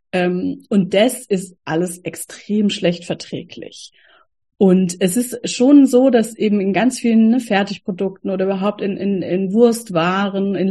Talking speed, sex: 140 wpm, female